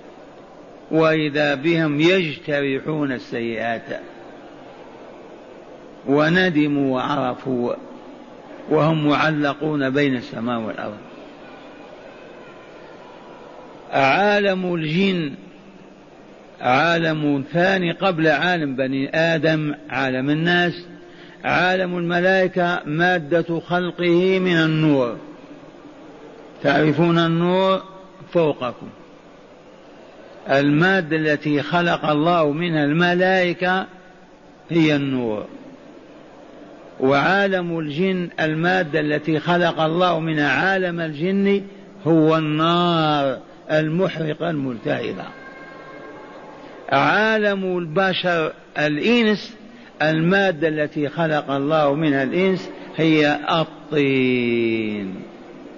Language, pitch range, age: Arabic, 145-180 Hz, 50-69